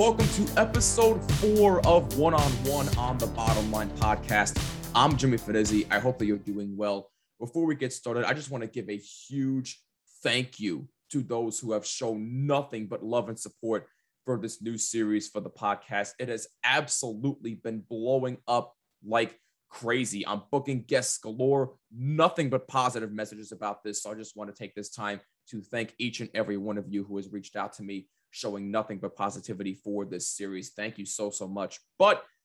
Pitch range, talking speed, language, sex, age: 105-130 Hz, 190 wpm, English, male, 20-39